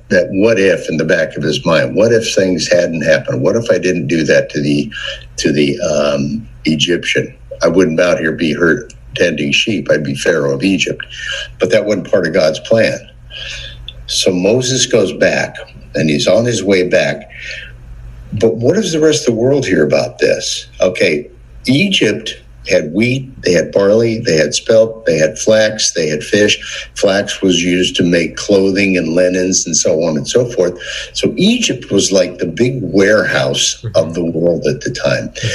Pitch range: 80-115 Hz